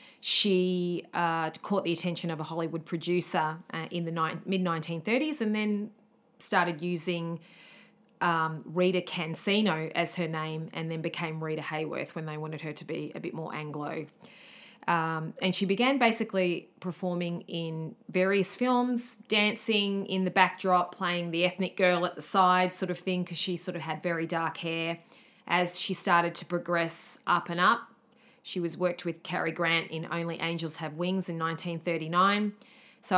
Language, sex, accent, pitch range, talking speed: English, female, Australian, 165-200 Hz, 165 wpm